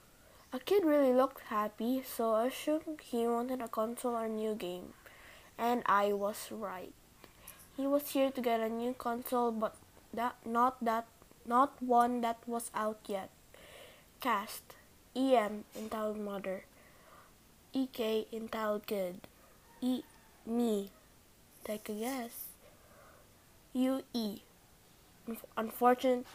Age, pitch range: 20-39, 215-250 Hz